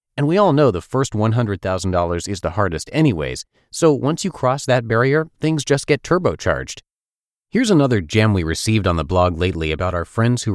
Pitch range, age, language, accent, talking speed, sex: 90-130 Hz, 30-49, English, American, 195 wpm, male